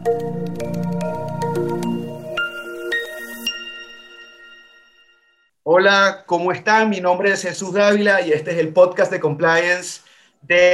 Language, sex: Spanish, male